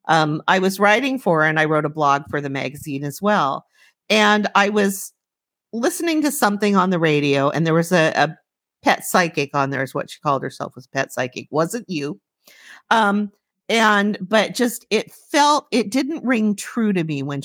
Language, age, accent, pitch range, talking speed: English, 50-69, American, 160-220 Hz, 195 wpm